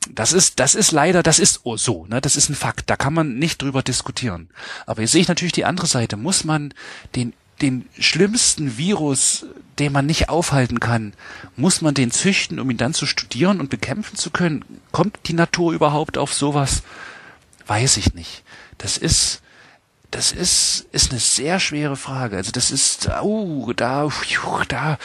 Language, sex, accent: German, male, German